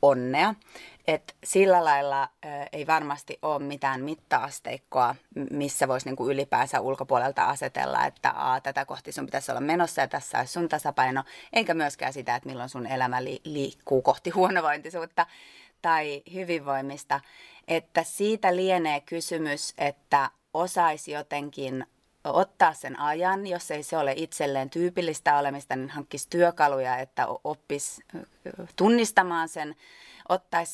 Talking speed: 130 wpm